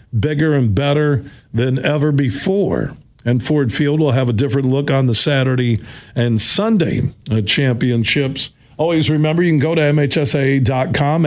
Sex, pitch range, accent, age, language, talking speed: male, 125-150 Hz, American, 50-69, English, 145 wpm